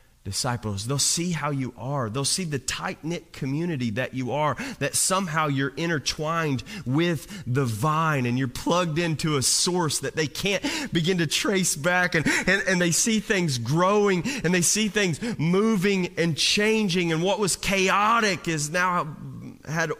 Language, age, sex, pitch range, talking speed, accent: English, 30-49, male, 125-185 Hz, 165 wpm, American